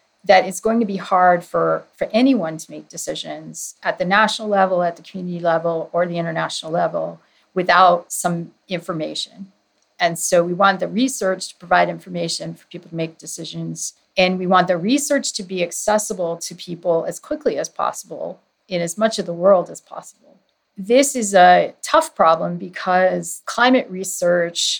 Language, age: English, 40-59